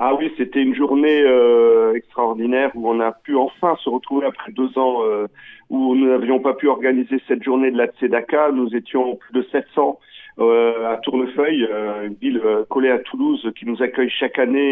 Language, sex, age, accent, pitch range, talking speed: Italian, male, 50-69, French, 120-145 Hz, 190 wpm